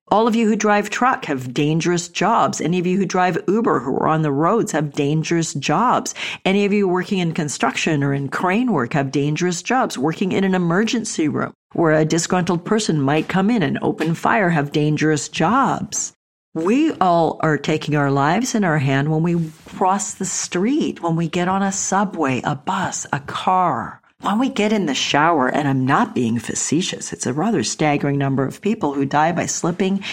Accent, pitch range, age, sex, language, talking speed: American, 145-190 Hz, 50-69, female, English, 200 wpm